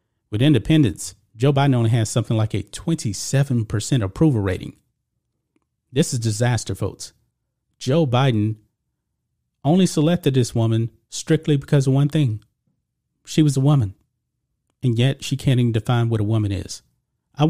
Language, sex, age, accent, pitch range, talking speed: English, male, 40-59, American, 115-145 Hz, 145 wpm